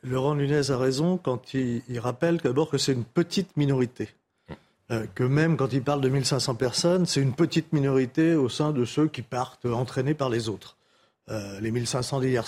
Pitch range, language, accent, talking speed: 125-155 Hz, French, French, 185 wpm